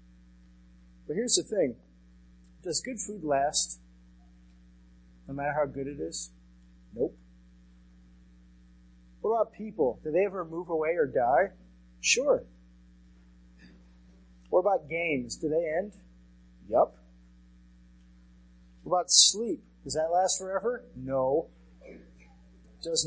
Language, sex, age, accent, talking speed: English, male, 40-59, American, 105 wpm